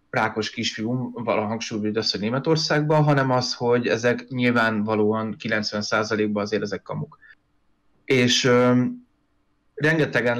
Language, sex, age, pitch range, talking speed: Hungarian, male, 30-49, 115-150 Hz, 105 wpm